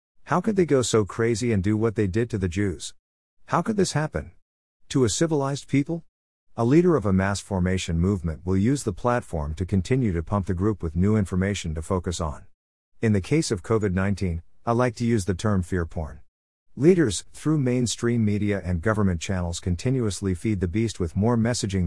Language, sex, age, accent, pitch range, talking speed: English, male, 50-69, American, 90-115 Hz, 200 wpm